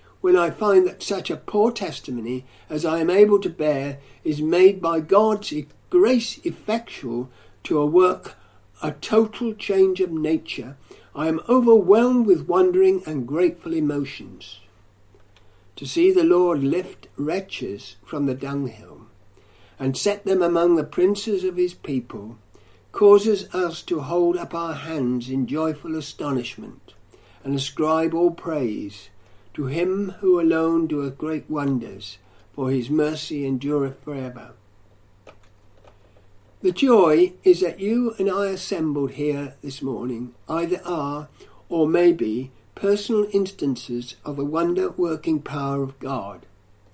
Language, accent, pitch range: English, British, 130-195 Hz